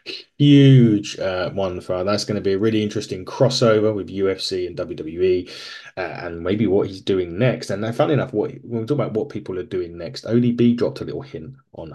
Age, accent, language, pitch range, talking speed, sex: 30-49, British, English, 105-130 Hz, 215 wpm, male